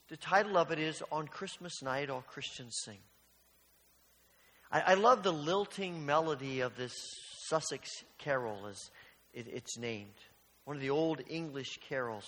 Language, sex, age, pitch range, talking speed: English, male, 40-59, 120-180 Hz, 150 wpm